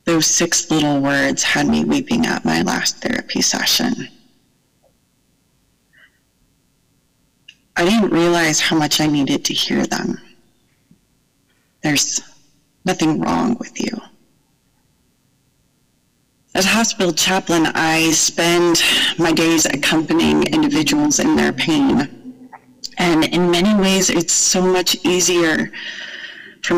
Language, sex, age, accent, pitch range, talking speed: English, female, 30-49, American, 150-190 Hz, 110 wpm